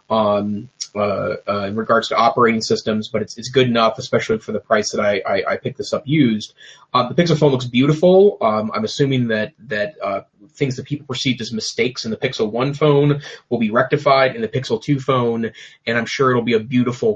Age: 30-49